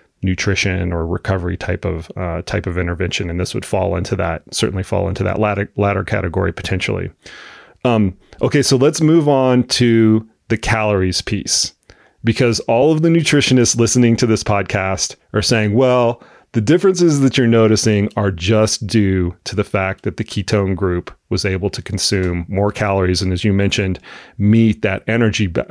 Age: 30-49